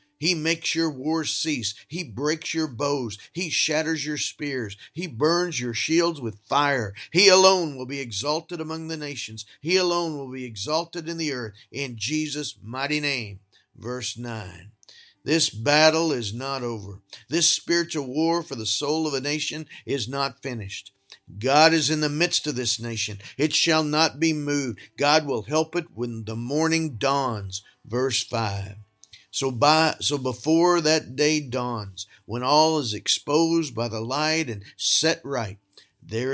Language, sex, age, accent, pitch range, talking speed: English, male, 50-69, American, 115-160 Hz, 165 wpm